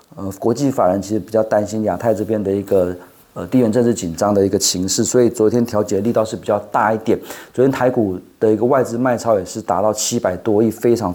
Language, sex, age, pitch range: Chinese, male, 30-49, 105-140 Hz